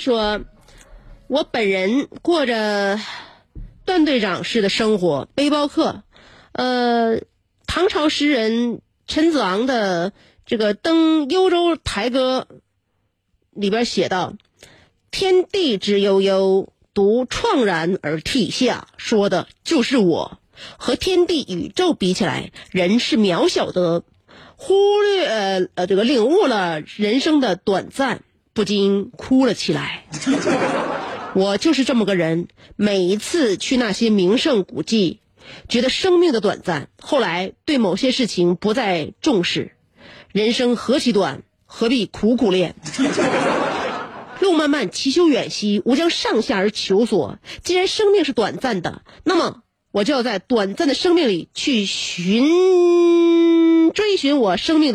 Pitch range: 195-310 Hz